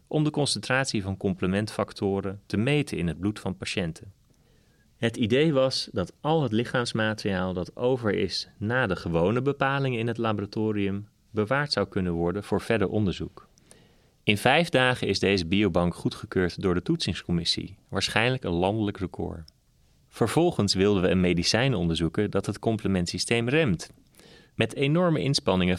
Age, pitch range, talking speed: 30-49, 95-120 Hz, 145 wpm